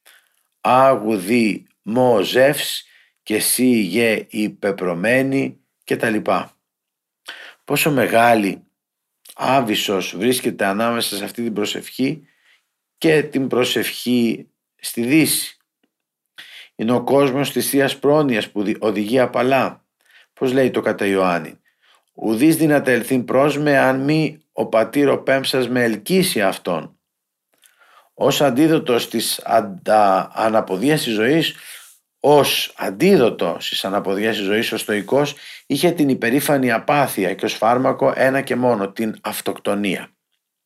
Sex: male